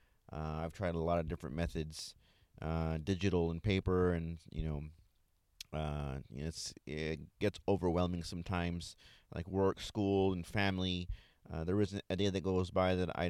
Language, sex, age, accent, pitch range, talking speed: English, male, 30-49, American, 85-100 Hz, 160 wpm